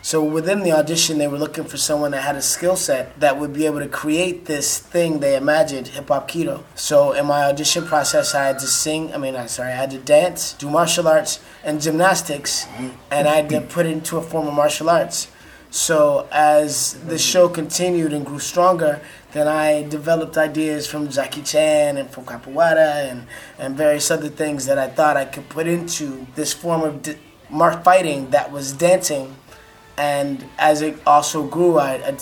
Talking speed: 195 wpm